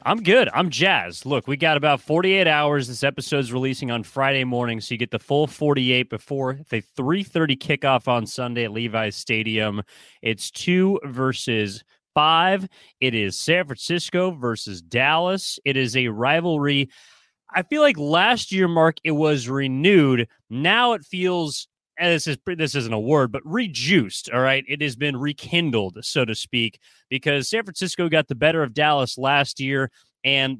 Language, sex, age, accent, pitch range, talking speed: English, male, 30-49, American, 125-165 Hz, 165 wpm